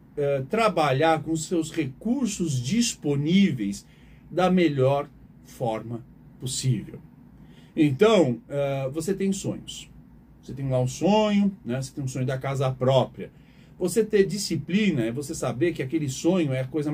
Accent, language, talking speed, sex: Brazilian, Portuguese, 140 wpm, male